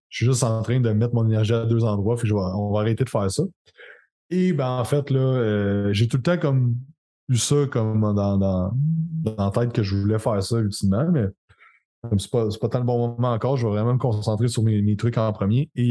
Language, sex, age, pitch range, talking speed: French, male, 20-39, 110-135 Hz, 260 wpm